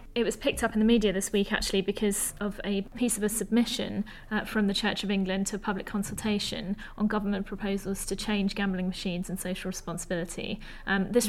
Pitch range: 195-210 Hz